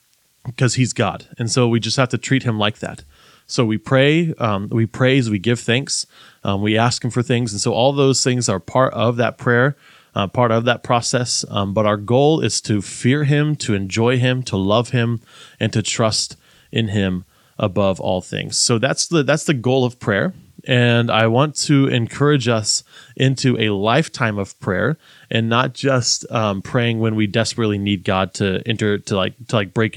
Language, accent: English, American